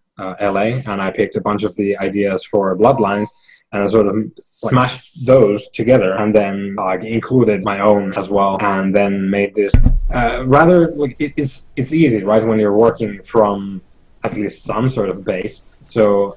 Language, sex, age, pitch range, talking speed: English, male, 20-39, 100-115 Hz, 185 wpm